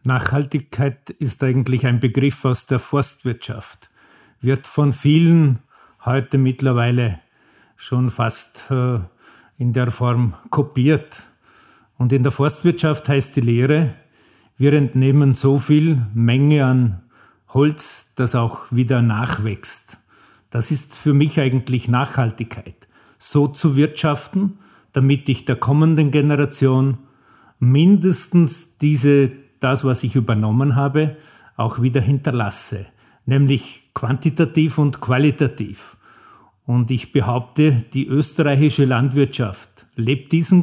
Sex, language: male, German